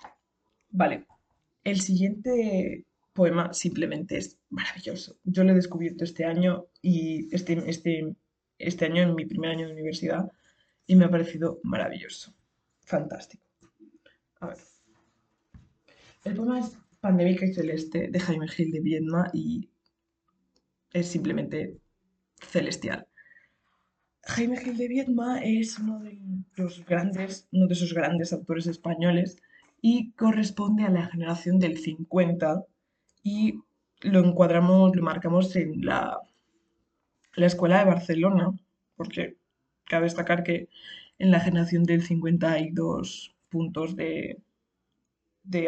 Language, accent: Spanish, Spanish